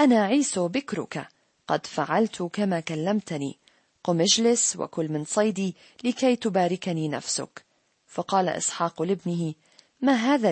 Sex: female